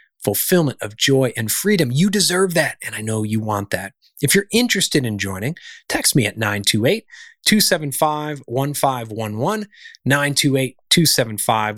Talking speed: 120 wpm